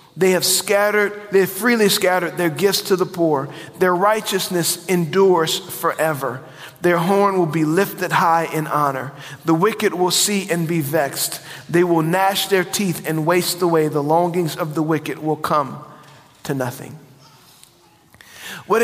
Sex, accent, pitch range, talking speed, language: male, American, 155-195 Hz, 155 wpm, English